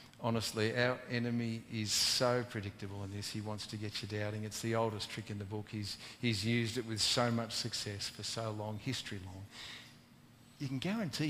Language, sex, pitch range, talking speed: English, male, 105-125 Hz, 195 wpm